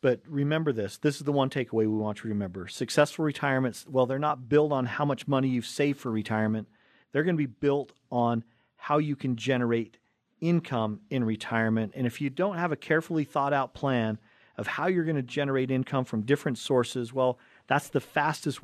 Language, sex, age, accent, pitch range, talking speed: English, male, 40-59, American, 120-145 Hz, 205 wpm